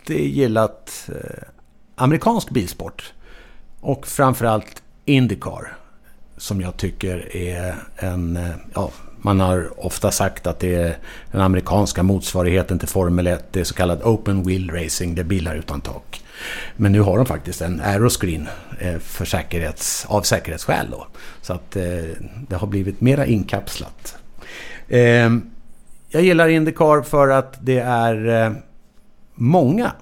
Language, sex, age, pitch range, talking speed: English, male, 60-79, 95-120 Hz, 140 wpm